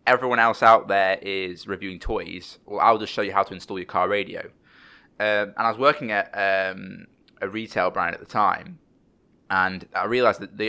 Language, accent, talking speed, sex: English, British, 200 wpm, male